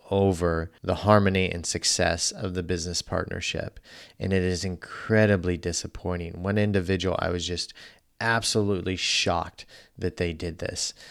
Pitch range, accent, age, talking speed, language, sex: 90-105 Hz, American, 30-49, 135 wpm, English, male